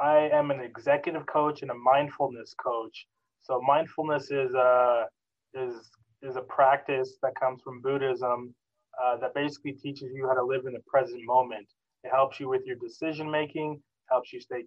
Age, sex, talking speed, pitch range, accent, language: 20-39, male, 165 wpm, 125-145 Hz, American, English